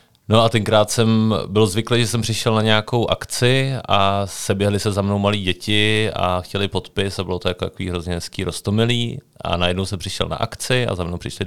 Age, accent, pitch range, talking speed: 30-49, native, 85-105 Hz, 210 wpm